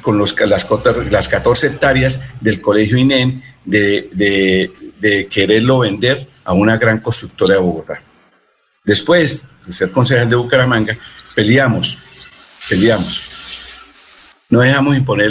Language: Spanish